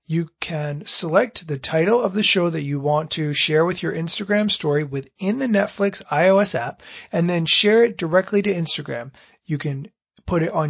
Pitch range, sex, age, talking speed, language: 145-200 Hz, male, 30-49, 190 wpm, English